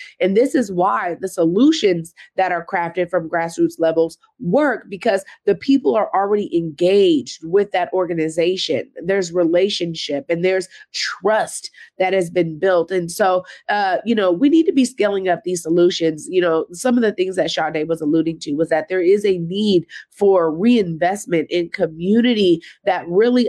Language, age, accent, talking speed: English, 30-49, American, 170 wpm